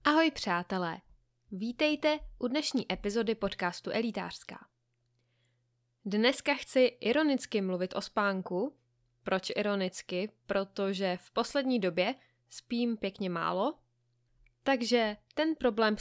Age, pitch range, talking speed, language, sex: 20-39, 185-245 Hz, 95 wpm, Czech, female